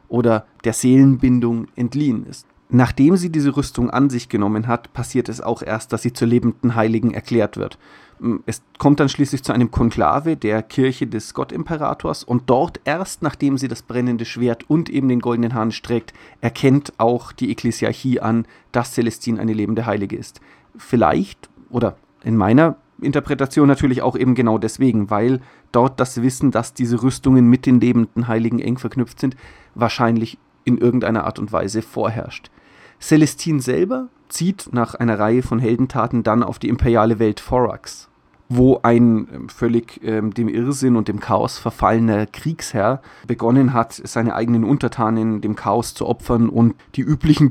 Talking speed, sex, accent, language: 160 wpm, male, German, German